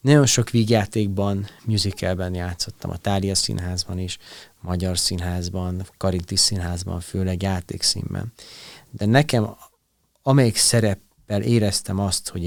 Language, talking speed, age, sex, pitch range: Hungarian, 105 wpm, 30-49, male, 85-105 Hz